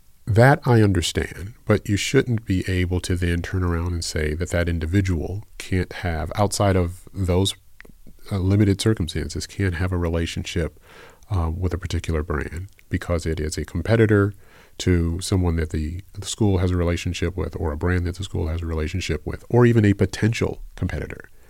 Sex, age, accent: male, 40-59, American